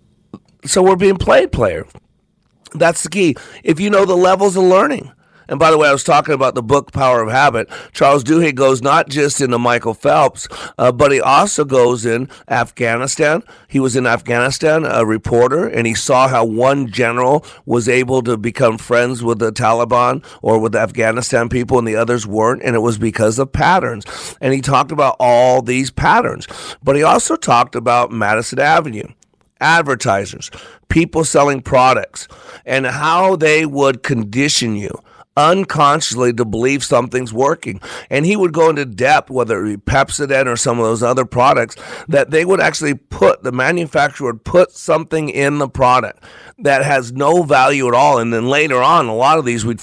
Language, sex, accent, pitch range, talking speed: English, male, American, 120-155 Hz, 180 wpm